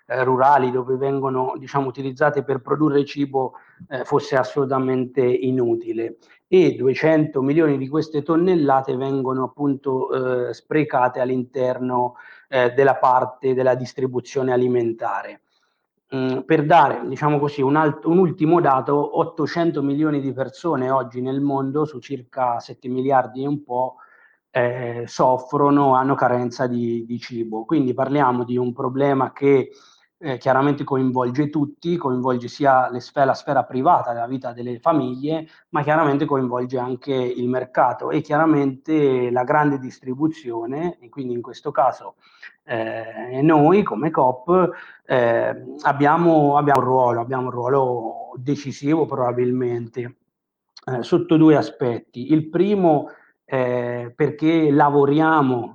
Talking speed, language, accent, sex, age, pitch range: 125 wpm, Italian, native, male, 30-49, 125-150 Hz